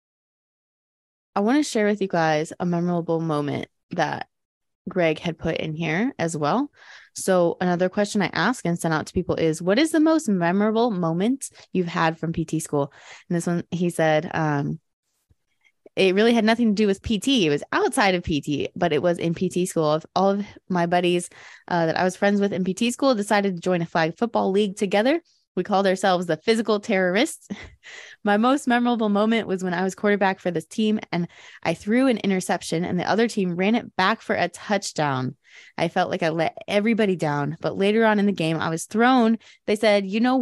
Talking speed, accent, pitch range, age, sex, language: 205 wpm, American, 170-220 Hz, 20-39, female, English